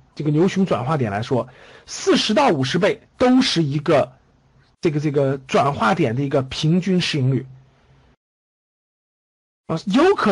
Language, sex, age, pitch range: Chinese, male, 50-69, 140-205 Hz